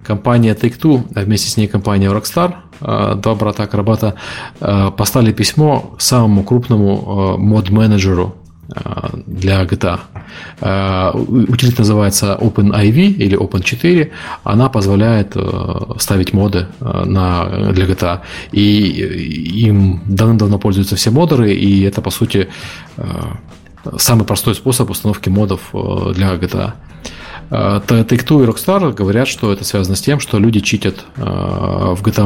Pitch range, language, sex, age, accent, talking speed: 95-115 Hz, Russian, male, 20-39, native, 110 wpm